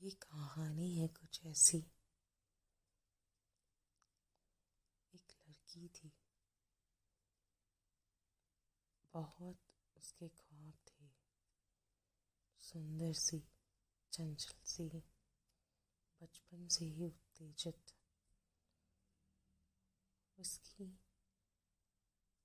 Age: 30-49